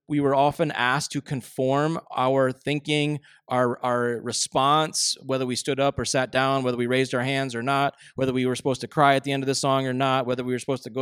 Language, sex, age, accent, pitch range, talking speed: English, male, 20-39, American, 135-165 Hz, 245 wpm